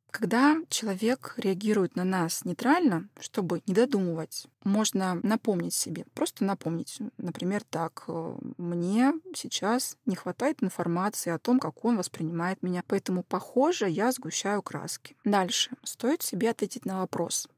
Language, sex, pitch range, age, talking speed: Russian, female, 175-235 Hz, 20-39, 130 wpm